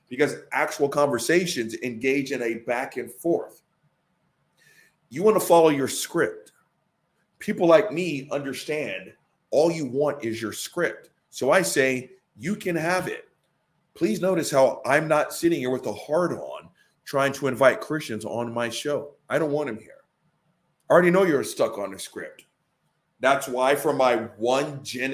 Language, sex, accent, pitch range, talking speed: English, male, American, 130-175 Hz, 165 wpm